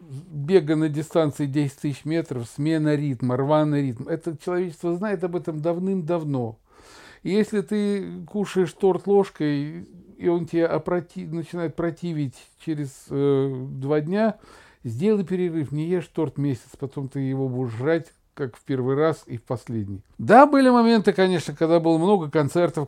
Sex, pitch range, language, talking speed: male, 130-175 Hz, Russian, 145 wpm